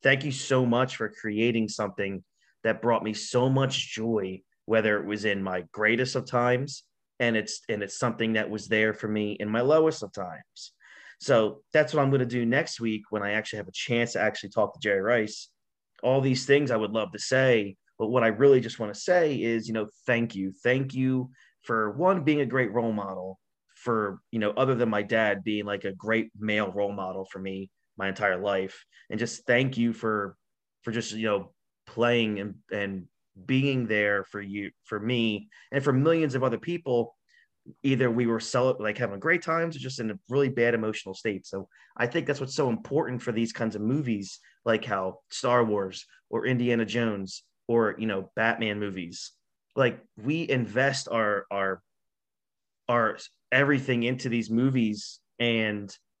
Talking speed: 195 wpm